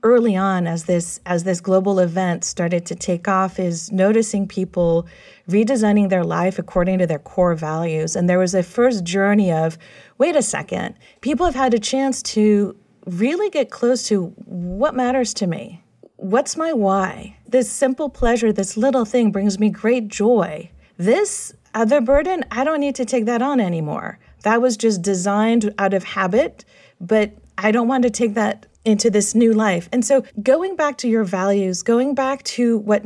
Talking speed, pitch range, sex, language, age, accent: 180 wpm, 190-240 Hz, female, English, 40-59, American